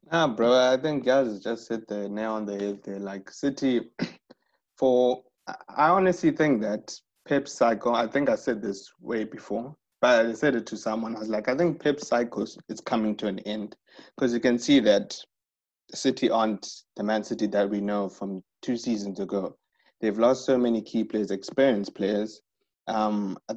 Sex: male